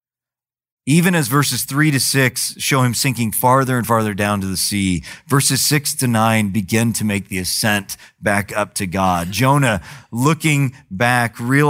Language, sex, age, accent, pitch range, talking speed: English, male, 40-59, American, 105-135 Hz, 165 wpm